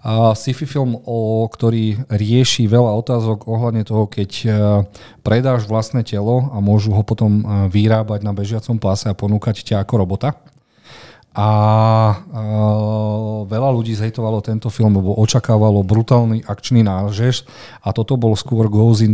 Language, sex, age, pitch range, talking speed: Slovak, male, 40-59, 105-120 Hz, 145 wpm